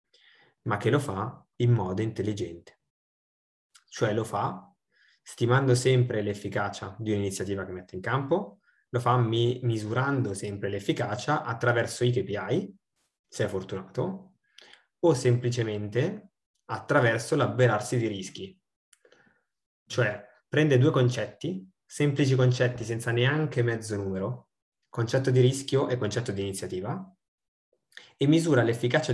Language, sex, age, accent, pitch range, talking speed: Italian, male, 20-39, native, 105-135 Hz, 115 wpm